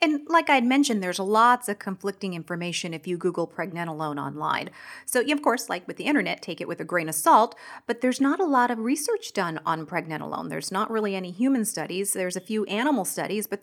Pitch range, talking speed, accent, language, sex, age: 175-225 Hz, 230 wpm, American, English, female, 30-49